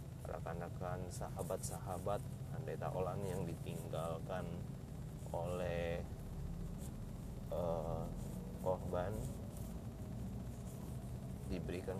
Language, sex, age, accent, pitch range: Indonesian, male, 30-49, native, 80-130 Hz